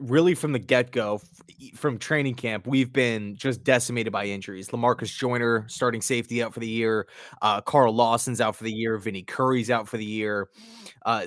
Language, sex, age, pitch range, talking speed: English, male, 20-39, 110-130 Hz, 185 wpm